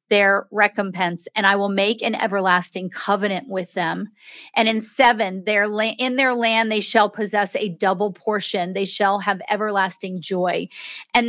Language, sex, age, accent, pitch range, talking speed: English, female, 40-59, American, 195-245 Hz, 165 wpm